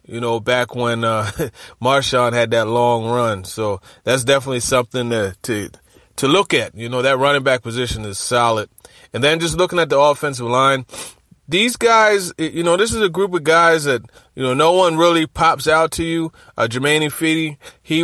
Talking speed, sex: 195 wpm, male